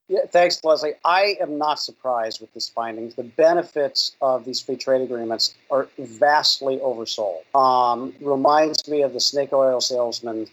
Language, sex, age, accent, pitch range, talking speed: English, male, 50-69, American, 130-180 Hz, 160 wpm